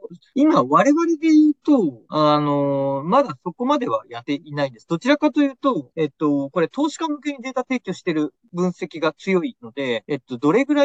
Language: Japanese